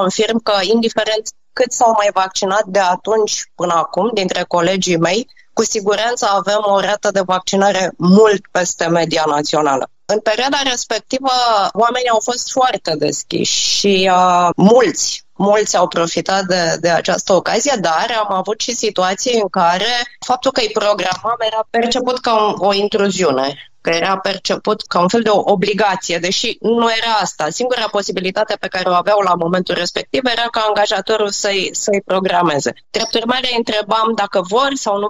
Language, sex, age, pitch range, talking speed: Romanian, female, 20-39, 185-220 Hz, 160 wpm